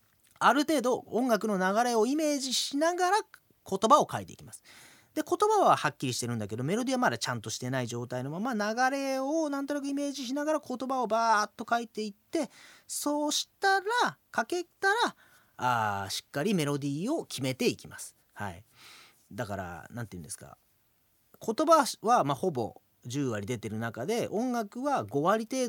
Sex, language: male, Japanese